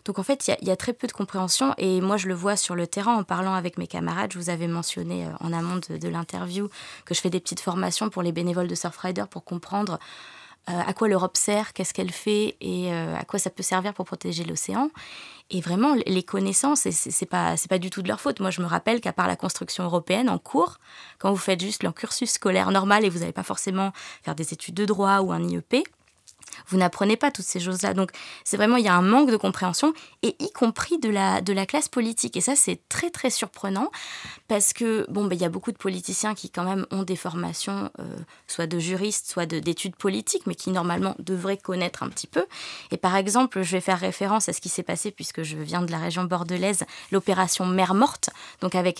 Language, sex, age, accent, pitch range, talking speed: French, female, 20-39, French, 175-210 Hz, 240 wpm